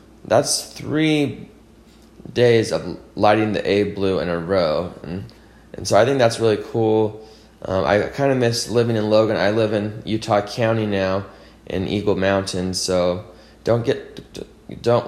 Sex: male